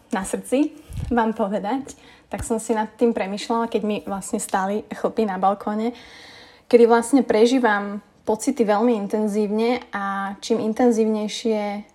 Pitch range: 200-240 Hz